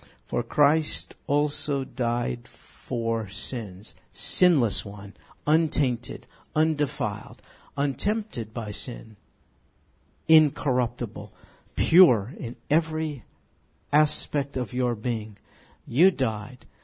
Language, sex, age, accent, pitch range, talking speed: English, male, 60-79, American, 110-145 Hz, 80 wpm